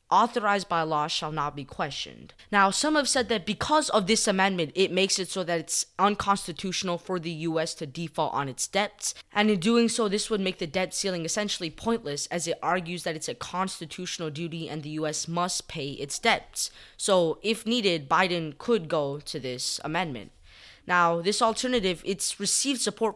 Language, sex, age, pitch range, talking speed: English, female, 20-39, 160-205 Hz, 190 wpm